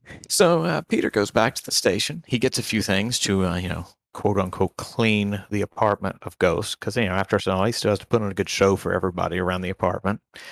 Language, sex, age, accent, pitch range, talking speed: English, male, 40-59, American, 95-115 Hz, 250 wpm